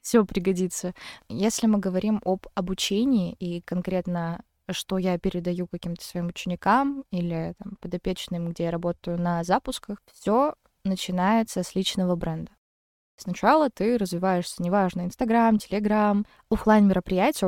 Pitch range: 180-205 Hz